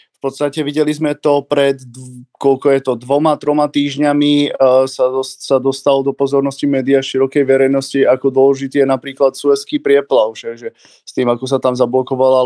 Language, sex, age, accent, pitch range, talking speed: Czech, male, 20-39, native, 135-150 Hz, 160 wpm